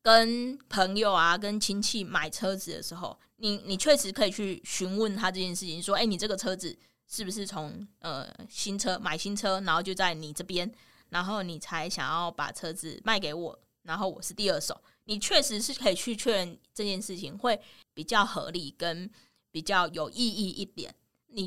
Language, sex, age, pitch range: Chinese, female, 20-39, 175-215 Hz